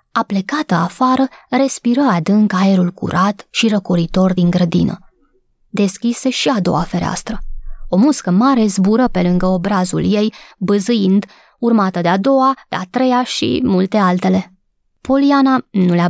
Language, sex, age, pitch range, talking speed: Romanian, female, 20-39, 185-250 Hz, 140 wpm